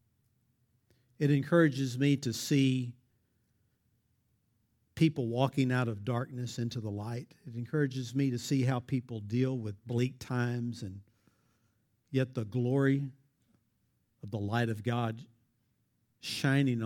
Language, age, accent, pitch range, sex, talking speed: English, 50-69, American, 115-130 Hz, male, 120 wpm